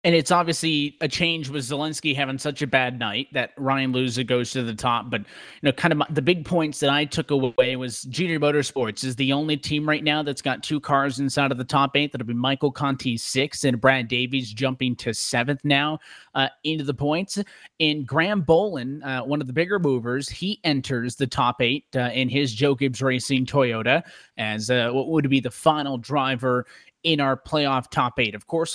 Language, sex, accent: English, male, American